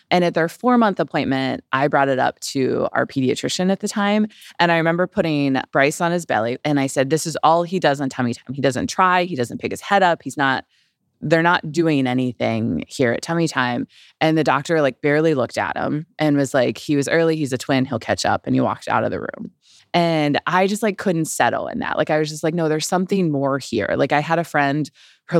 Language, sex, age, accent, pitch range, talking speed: English, female, 20-39, American, 135-170 Hz, 245 wpm